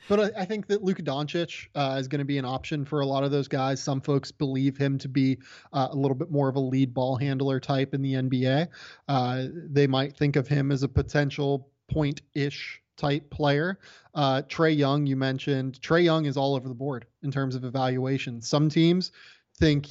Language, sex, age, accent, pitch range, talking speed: English, male, 20-39, American, 130-150 Hz, 215 wpm